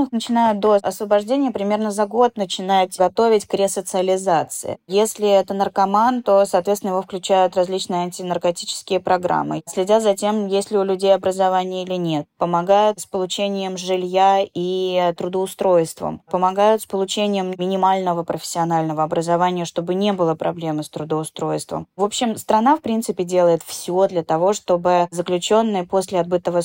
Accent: native